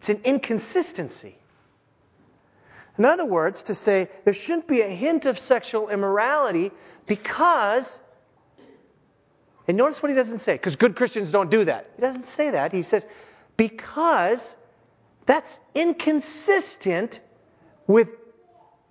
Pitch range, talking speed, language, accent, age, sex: 210-295 Hz, 125 wpm, English, American, 30-49, male